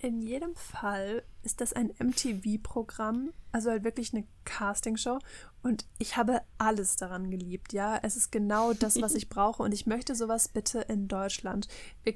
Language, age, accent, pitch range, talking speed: German, 10-29, German, 205-240 Hz, 170 wpm